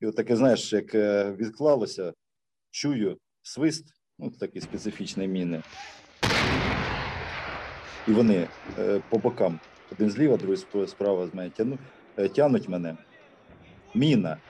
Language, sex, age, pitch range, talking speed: Ukrainian, male, 50-69, 100-130 Hz, 95 wpm